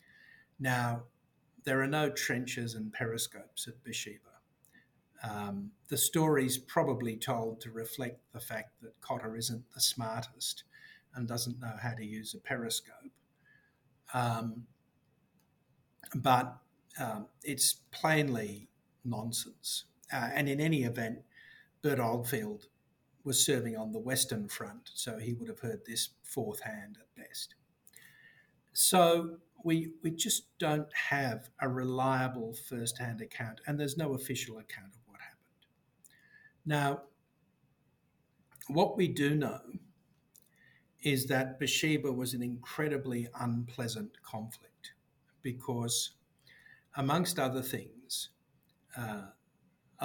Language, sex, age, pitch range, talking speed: English, male, 50-69, 115-145 Hz, 115 wpm